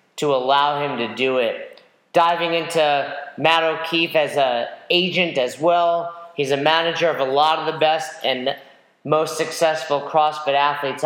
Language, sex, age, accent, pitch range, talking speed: English, male, 40-59, American, 155-180 Hz, 155 wpm